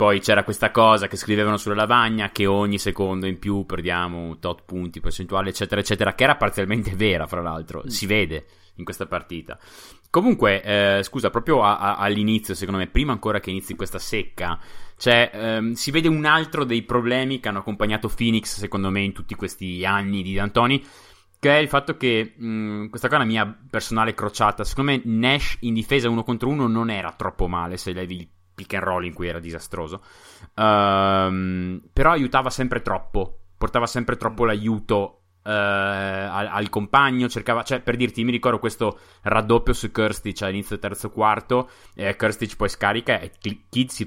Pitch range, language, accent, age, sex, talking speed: 95-115 Hz, Italian, native, 20-39, male, 180 wpm